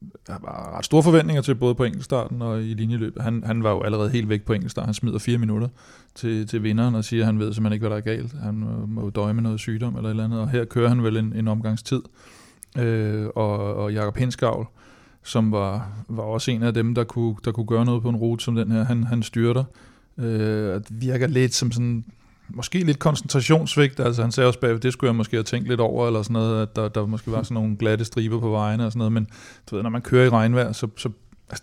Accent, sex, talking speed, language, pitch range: native, male, 250 wpm, Danish, 110-125 Hz